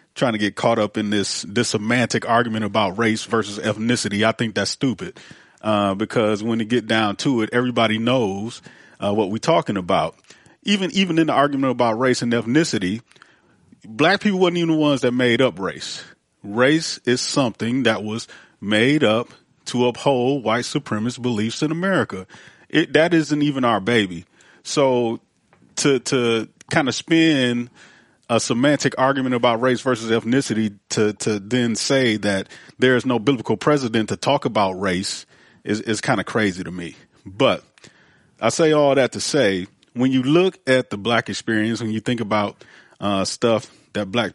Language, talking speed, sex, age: English, 175 wpm, male, 30-49